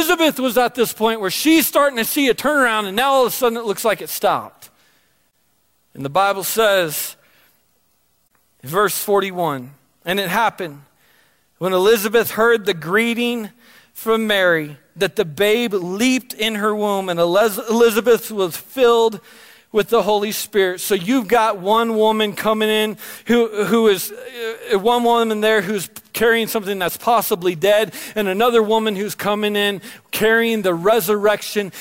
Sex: male